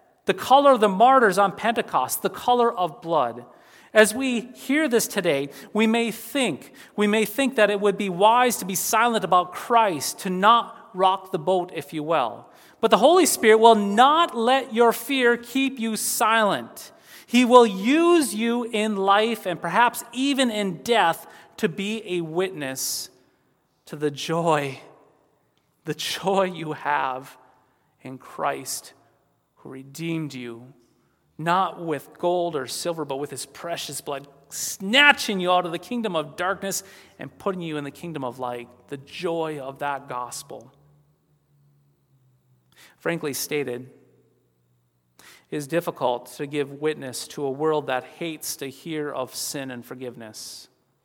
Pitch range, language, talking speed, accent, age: 145-215 Hz, English, 150 wpm, American, 40-59